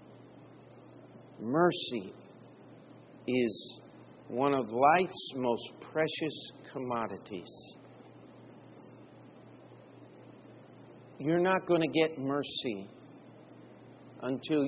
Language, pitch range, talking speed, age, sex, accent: English, 130-190 Hz, 60 wpm, 50-69, male, American